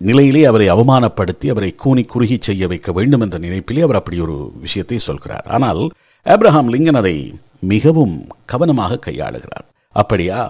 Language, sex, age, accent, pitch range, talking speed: Tamil, male, 50-69, native, 100-145 Hz, 135 wpm